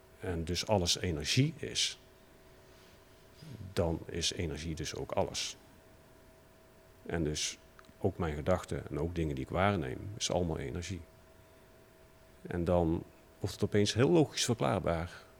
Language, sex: Dutch, male